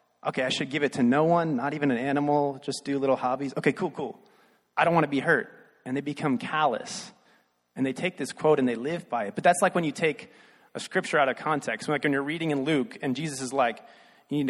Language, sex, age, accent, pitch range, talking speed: English, male, 30-49, American, 135-180 Hz, 255 wpm